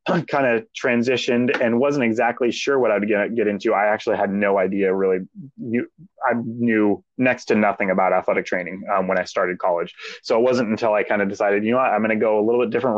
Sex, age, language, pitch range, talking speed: male, 20-39, English, 100-120 Hz, 225 wpm